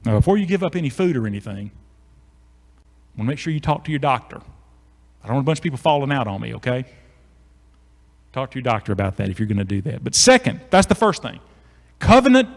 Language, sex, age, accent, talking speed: English, male, 40-59, American, 240 wpm